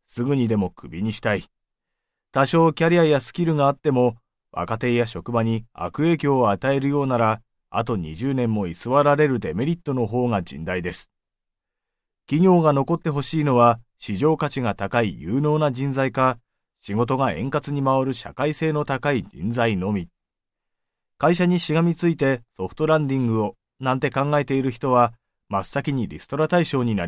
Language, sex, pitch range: Japanese, male, 115-145 Hz